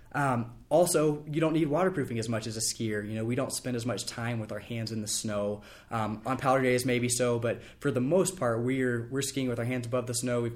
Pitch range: 115-135 Hz